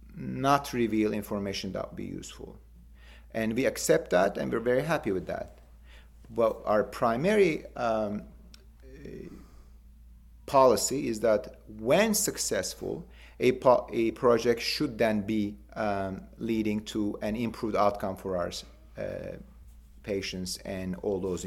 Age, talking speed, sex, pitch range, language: 40-59, 130 wpm, male, 95-120 Hz, English